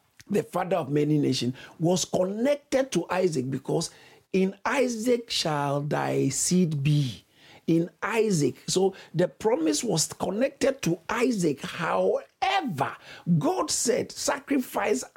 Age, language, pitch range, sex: 50-69, English, 150-230 Hz, male